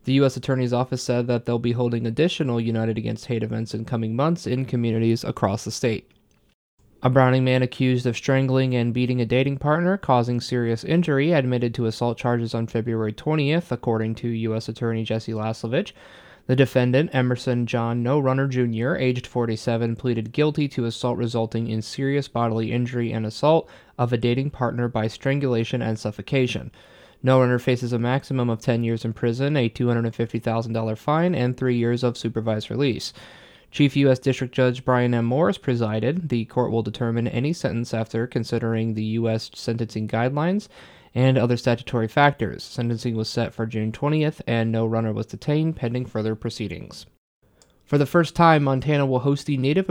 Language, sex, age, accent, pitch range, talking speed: English, male, 20-39, American, 115-130 Hz, 170 wpm